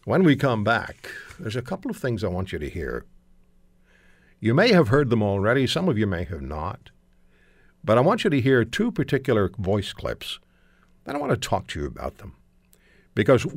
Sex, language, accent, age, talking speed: male, English, American, 60-79, 210 wpm